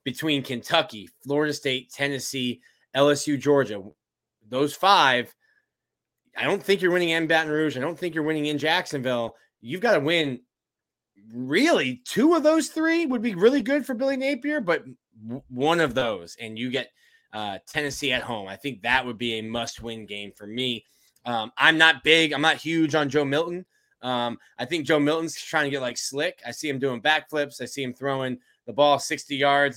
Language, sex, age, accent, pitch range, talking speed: English, male, 20-39, American, 125-155 Hz, 190 wpm